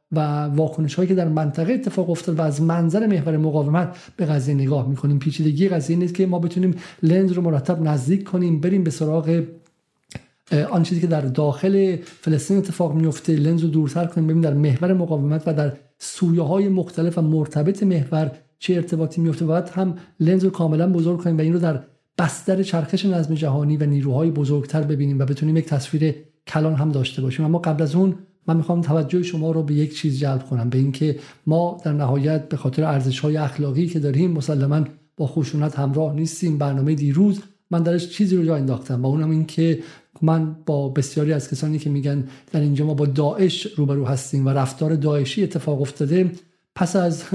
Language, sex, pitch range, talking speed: Persian, male, 150-170 Hz, 190 wpm